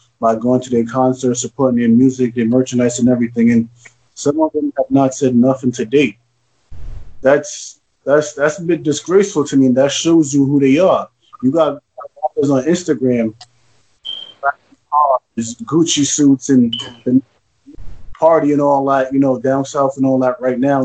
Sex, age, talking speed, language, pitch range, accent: male, 20-39, 170 wpm, English, 130-160 Hz, American